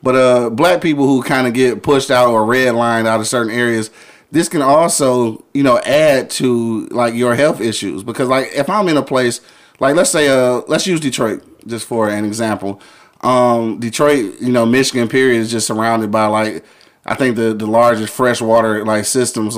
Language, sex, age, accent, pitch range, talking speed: English, male, 30-49, American, 115-135 Hz, 195 wpm